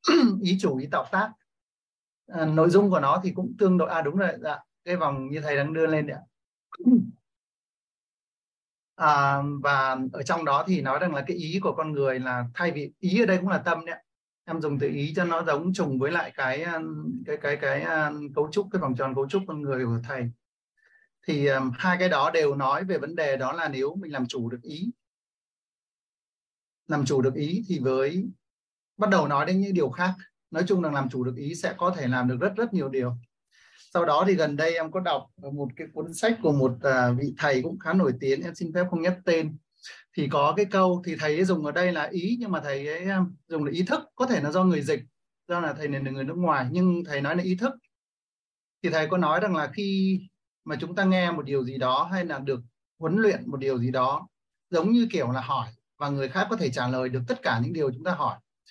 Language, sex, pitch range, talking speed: Vietnamese, male, 140-185 Hz, 240 wpm